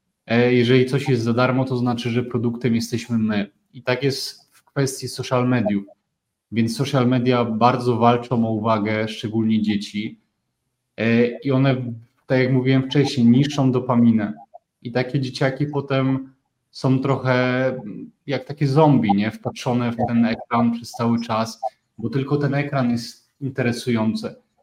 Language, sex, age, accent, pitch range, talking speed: Polish, male, 30-49, native, 115-130 Hz, 140 wpm